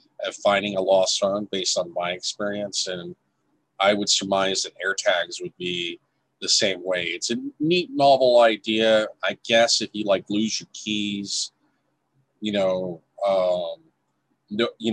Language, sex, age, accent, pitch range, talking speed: English, male, 40-59, American, 100-120 Hz, 155 wpm